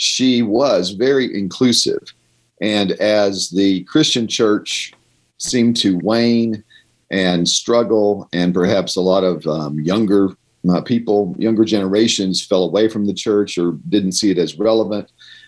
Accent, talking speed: American, 140 wpm